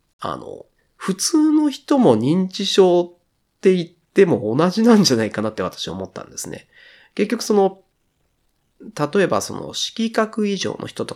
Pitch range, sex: 155-220 Hz, male